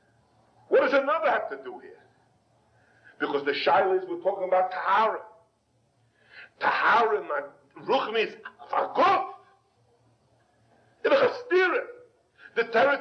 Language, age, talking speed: English, 50-69, 100 wpm